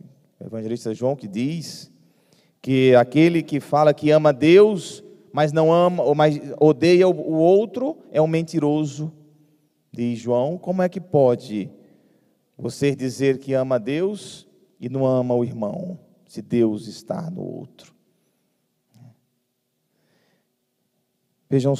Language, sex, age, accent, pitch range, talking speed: Portuguese, male, 40-59, Brazilian, 130-165 Hz, 120 wpm